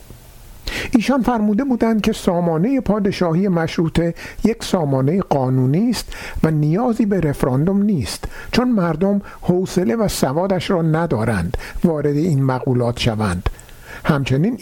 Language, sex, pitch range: Persian, male, 150-205 Hz